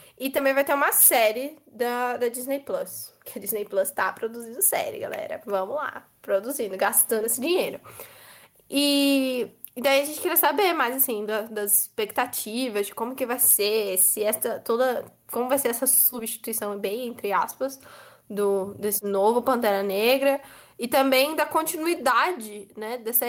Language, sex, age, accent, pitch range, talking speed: Portuguese, female, 10-29, Brazilian, 215-275 Hz, 160 wpm